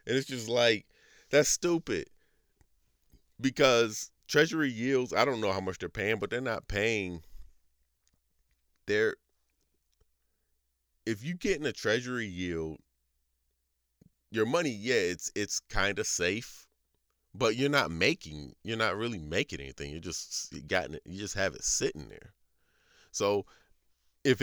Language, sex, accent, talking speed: English, male, American, 140 wpm